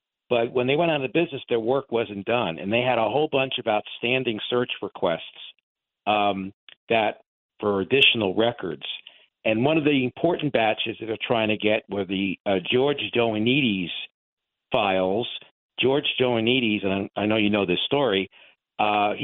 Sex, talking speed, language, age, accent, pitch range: male, 165 wpm, English, 50-69, American, 100-125 Hz